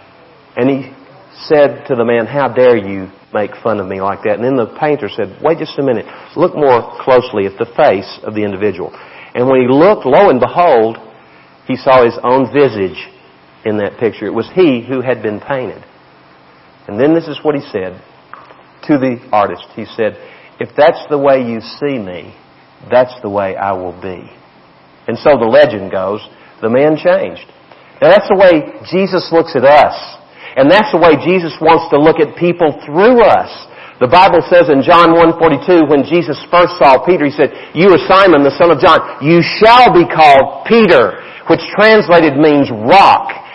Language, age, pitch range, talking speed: English, 50-69, 110-165 Hz, 190 wpm